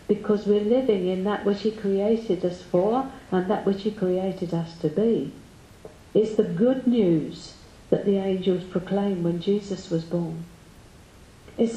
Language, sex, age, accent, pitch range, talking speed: English, female, 50-69, British, 185-235 Hz, 160 wpm